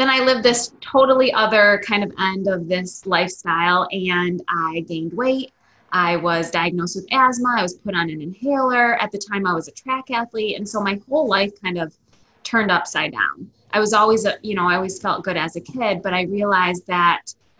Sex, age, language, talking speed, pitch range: female, 20-39, English, 210 wpm, 180-220 Hz